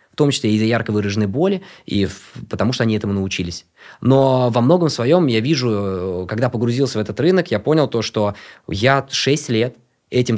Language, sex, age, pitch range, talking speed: Russian, male, 20-39, 110-145 Hz, 190 wpm